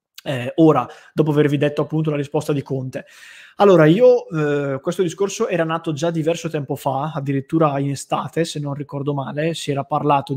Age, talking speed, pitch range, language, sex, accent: 20-39, 175 wpm, 145-170 Hz, English, male, Italian